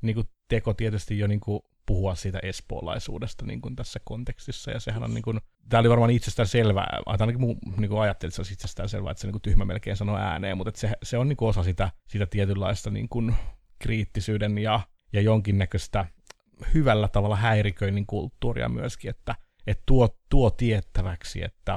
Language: Finnish